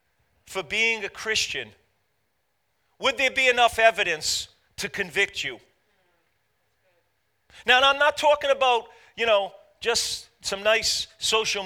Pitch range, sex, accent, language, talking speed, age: 215-275 Hz, male, American, English, 125 wpm, 40-59